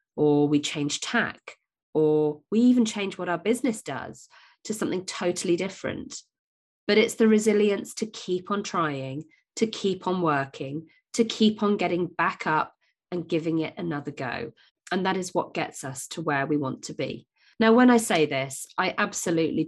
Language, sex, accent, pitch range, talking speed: English, female, British, 150-210 Hz, 175 wpm